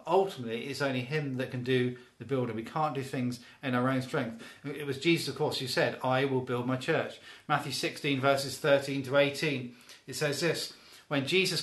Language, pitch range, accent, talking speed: English, 125-160 Hz, British, 205 wpm